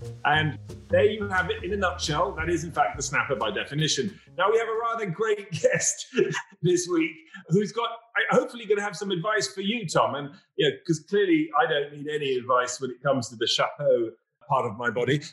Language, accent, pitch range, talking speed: English, British, 160-215 Hz, 225 wpm